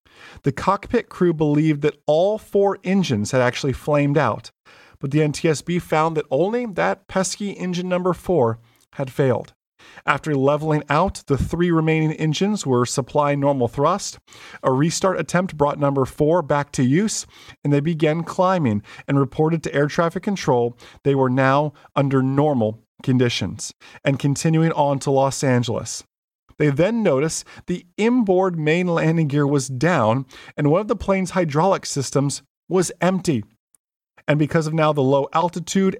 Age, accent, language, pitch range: 40-59, American, English, 130-165 Hz